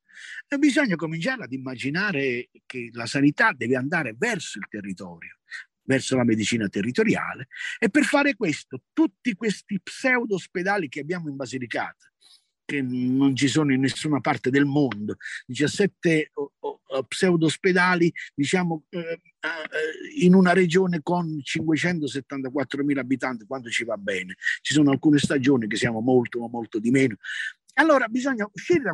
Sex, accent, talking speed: male, native, 135 wpm